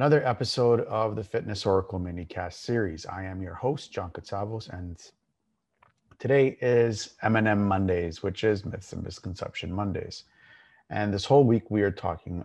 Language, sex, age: English, male, 30-49